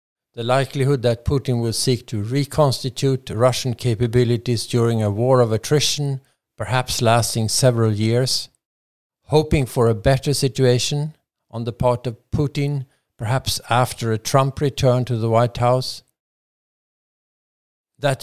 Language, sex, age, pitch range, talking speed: English, male, 50-69, 115-135 Hz, 130 wpm